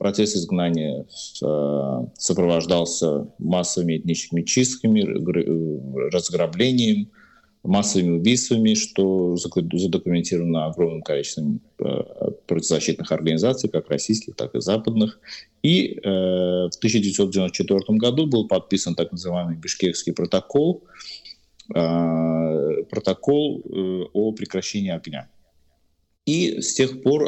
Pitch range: 85-110 Hz